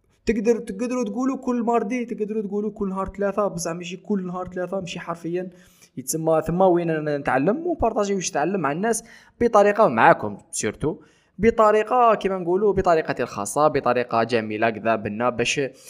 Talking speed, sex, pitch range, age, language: 145 wpm, male, 120-200 Hz, 20-39, Arabic